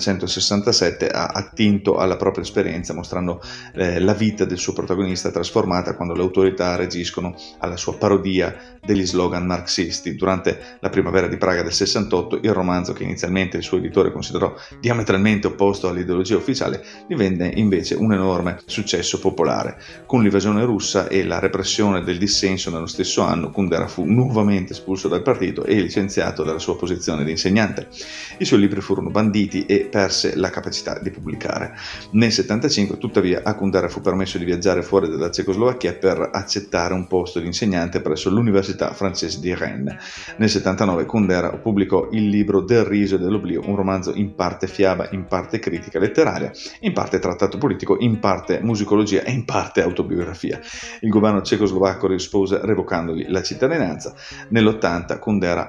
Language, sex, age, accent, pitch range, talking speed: Italian, male, 30-49, native, 90-105 Hz, 155 wpm